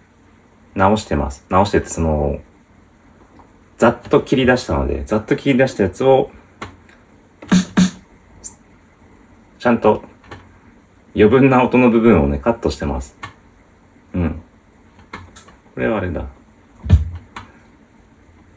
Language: Japanese